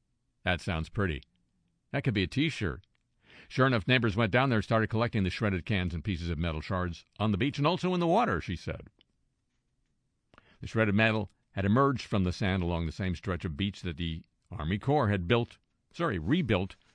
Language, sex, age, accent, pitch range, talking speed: English, male, 50-69, American, 90-120 Hz, 205 wpm